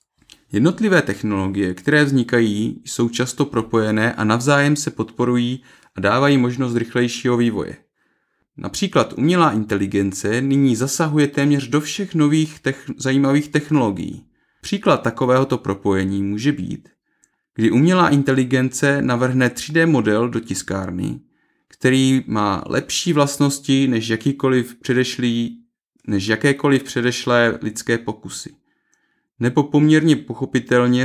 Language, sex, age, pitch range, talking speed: Czech, male, 30-49, 115-145 Hz, 105 wpm